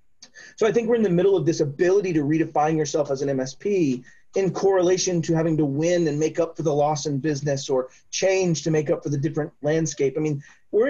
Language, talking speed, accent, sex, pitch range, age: English, 230 wpm, American, male, 140-170 Hz, 30-49